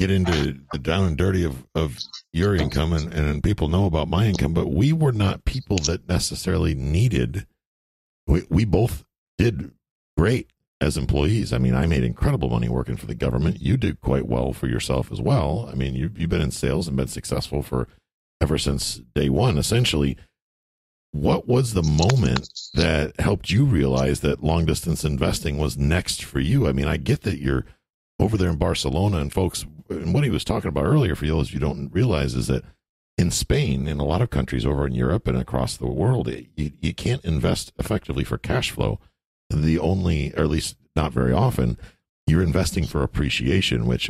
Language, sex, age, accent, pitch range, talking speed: English, male, 50-69, American, 65-90 Hz, 195 wpm